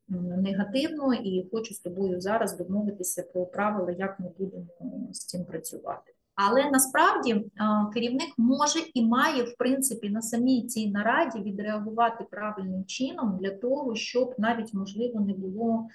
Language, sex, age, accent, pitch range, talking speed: Ukrainian, female, 30-49, native, 190-230 Hz, 140 wpm